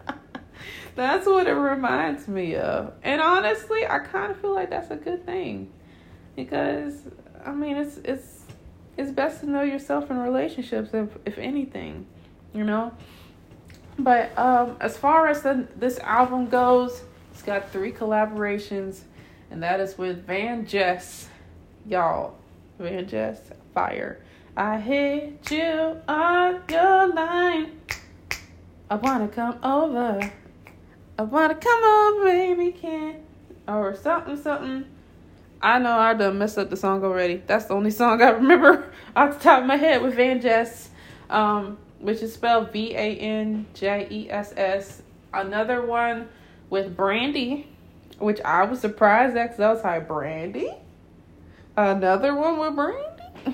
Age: 20-39